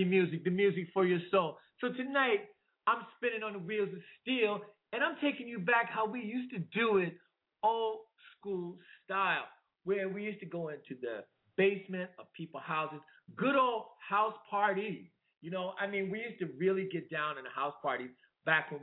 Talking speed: 190 wpm